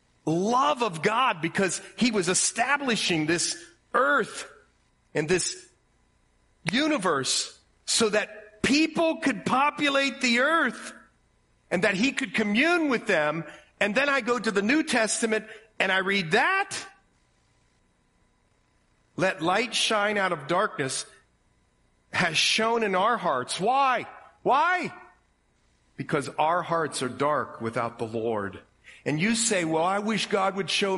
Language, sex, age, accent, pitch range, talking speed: English, male, 40-59, American, 160-250 Hz, 130 wpm